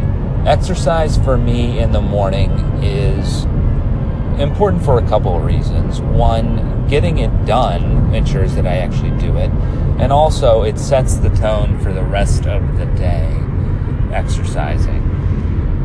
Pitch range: 90-115 Hz